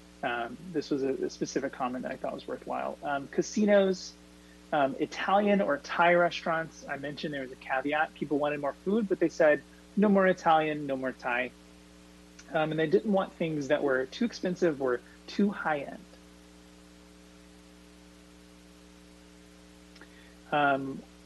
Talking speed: 150 wpm